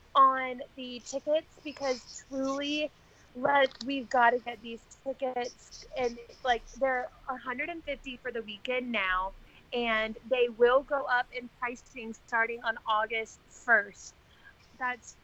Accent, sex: American, female